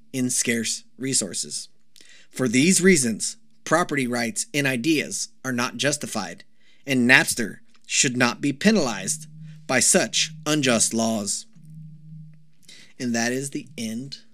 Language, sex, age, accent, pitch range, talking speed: English, male, 30-49, American, 120-180 Hz, 115 wpm